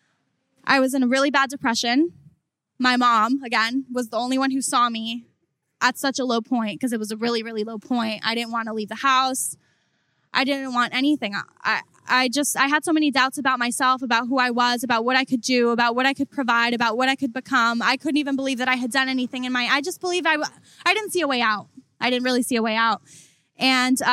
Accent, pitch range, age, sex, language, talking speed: American, 240-275 Hz, 10-29, female, English, 245 wpm